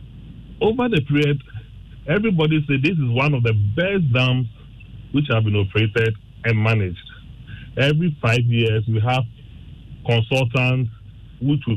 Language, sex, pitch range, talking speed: English, male, 110-135 Hz, 135 wpm